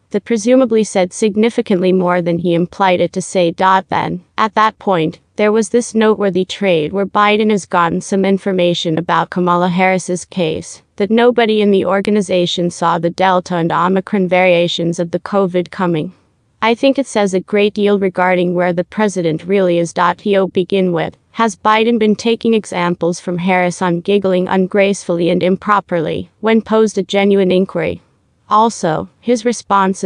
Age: 30-49